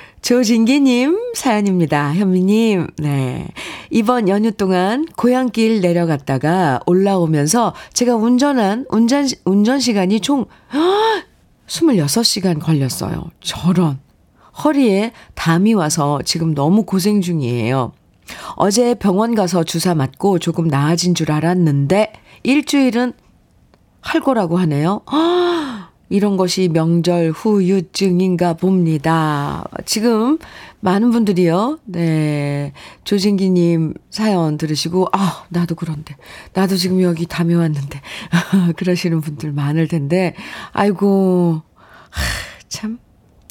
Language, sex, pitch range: Korean, female, 165-220 Hz